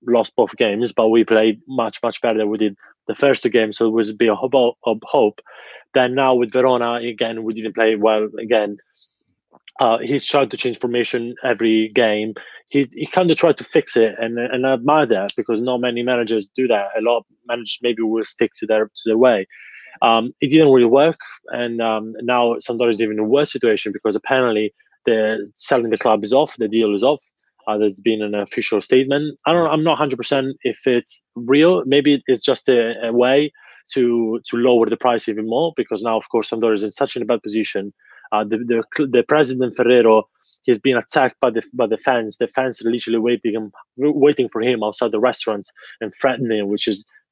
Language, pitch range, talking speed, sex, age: English, 110-125 Hz, 210 wpm, male, 20-39